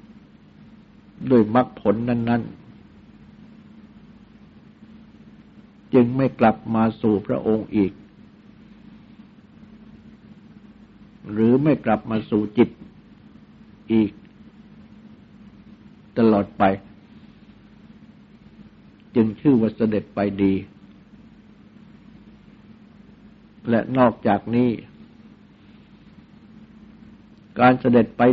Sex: male